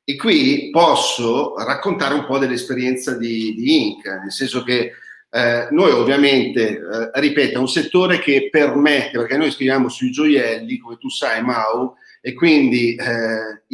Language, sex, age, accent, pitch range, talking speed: Italian, male, 40-59, native, 115-155 Hz, 155 wpm